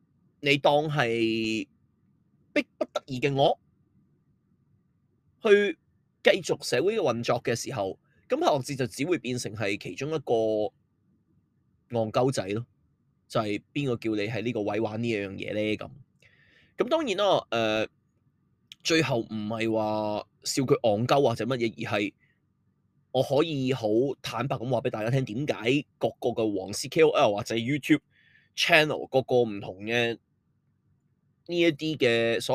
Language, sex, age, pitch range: Chinese, male, 20-39, 115-150 Hz